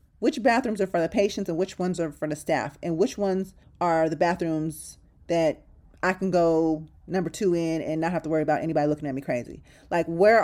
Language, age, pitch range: English, 30-49, 160-200 Hz